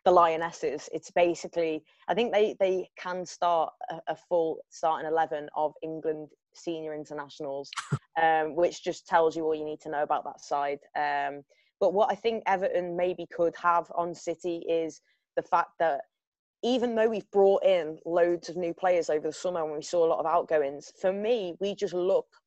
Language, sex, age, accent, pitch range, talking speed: English, female, 20-39, British, 160-185 Hz, 185 wpm